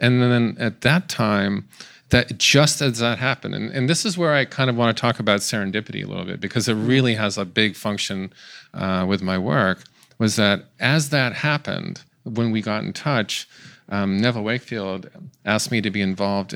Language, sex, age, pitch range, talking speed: English, male, 40-59, 100-125 Hz, 200 wpm